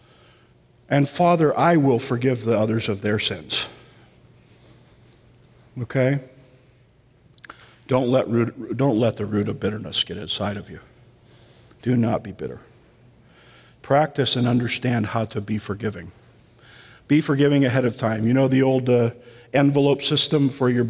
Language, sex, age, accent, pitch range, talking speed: English, male, 50-69, American, 120-160 Hz, 140 wpm